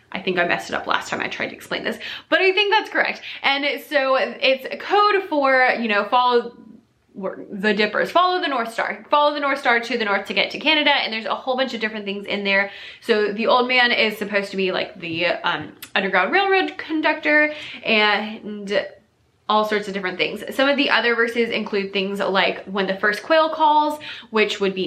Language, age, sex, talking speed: English, 20-39, female, 215 wpm